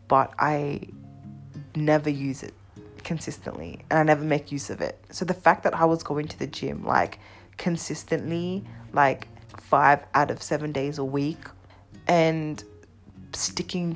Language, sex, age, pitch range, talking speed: English, female, 20-39, 135-165 Hz, 150 wpm